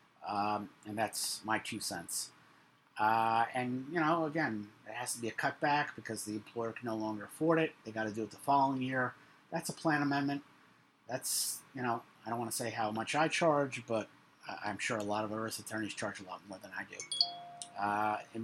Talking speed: 220 wpm